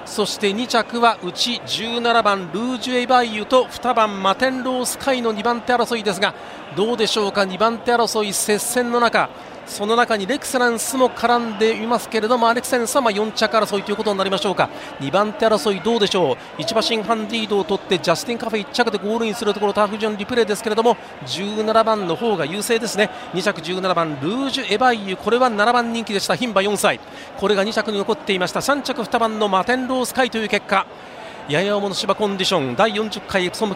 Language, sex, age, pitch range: Japanese, male, 40-59, 195-235 Hz